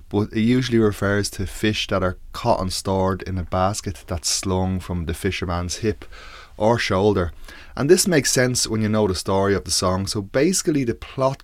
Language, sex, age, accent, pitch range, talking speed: English, male, 20-39, Irish, 90-110 Hz, 200 wpm